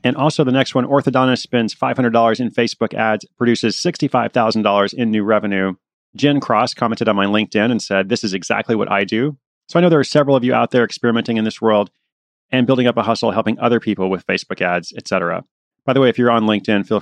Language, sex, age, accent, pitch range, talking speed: English, male, 30-49, American, 105-125 Hz, 225 wpm